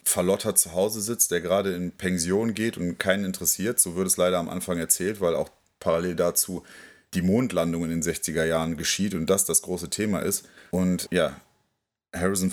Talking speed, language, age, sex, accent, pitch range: 185 wpm, German, 30-49, male, German, 85-95 Hz